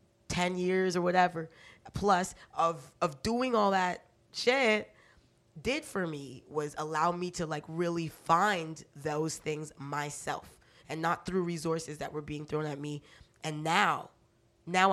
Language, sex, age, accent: English, female, 20-39, American